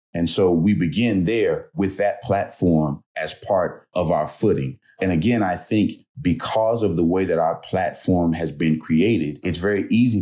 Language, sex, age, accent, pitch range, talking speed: English, male, 30-49, American, 80-100 Hz, 175 wpm